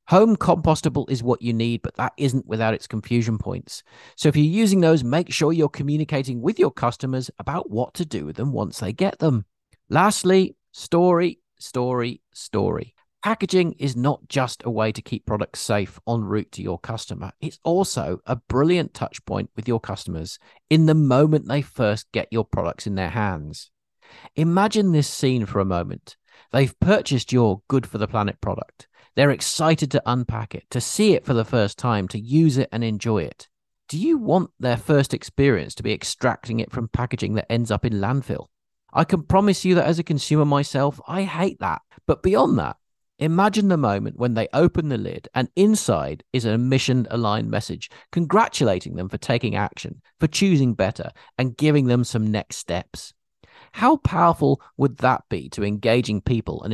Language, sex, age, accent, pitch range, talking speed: English, male, 40-59, British, 110-155 Hz, 185 wpm